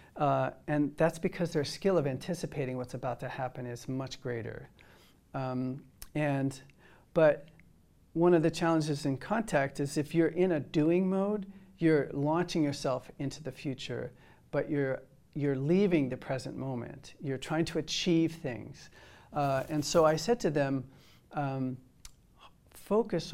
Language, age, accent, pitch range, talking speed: English, 40-59, American, 130-160 Hz, 150 wpm